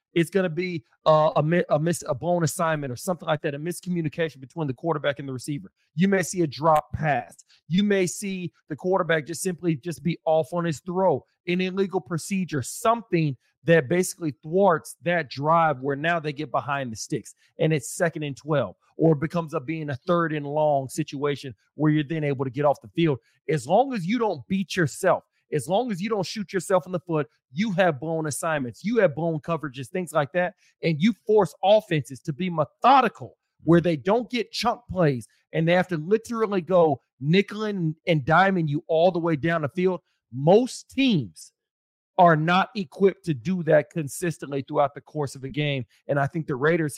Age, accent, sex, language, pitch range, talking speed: 40-59, American, male, English, 150-185 Hz, 200 wpm